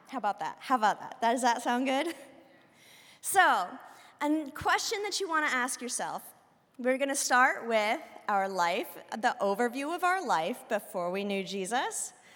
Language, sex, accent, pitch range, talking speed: English, female, American, 200-275 Hz, 170 wpm